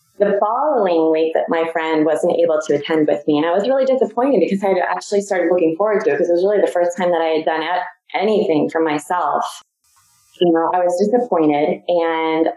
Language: English